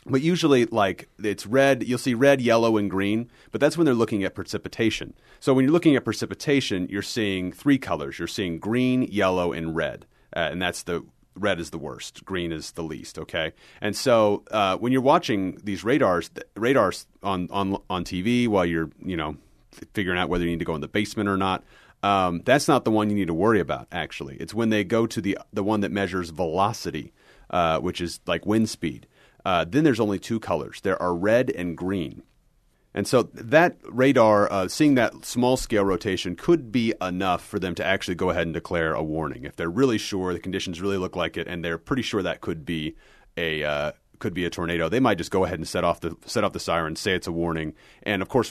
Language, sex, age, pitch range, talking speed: English, male, 30-49, 85-110 Hz, 230 wpm